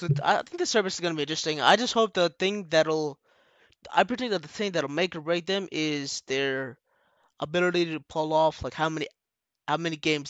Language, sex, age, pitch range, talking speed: English, male, 20-39, 135-160 Hz, 210 wpm